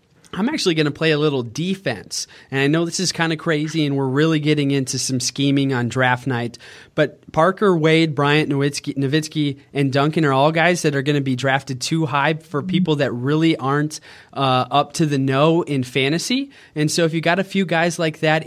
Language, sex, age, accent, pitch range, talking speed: English, male, 20-39, American, 130-155 Hz, 220 wpm